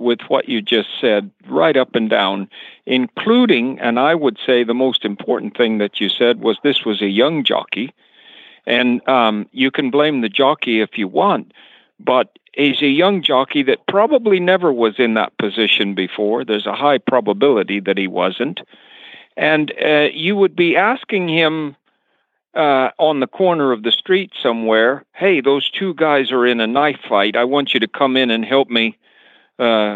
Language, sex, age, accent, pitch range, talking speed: English, male, 50-69, American, 115-155 Hz, 180 wpm